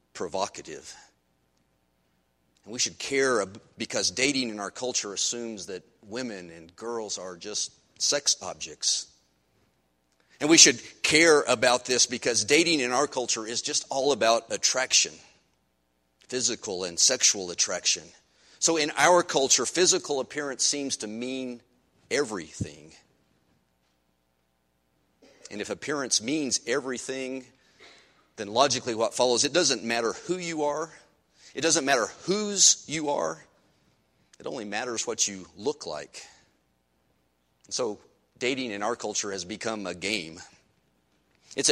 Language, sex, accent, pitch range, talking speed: English, male, American, 85-135 Hz, 130 wpm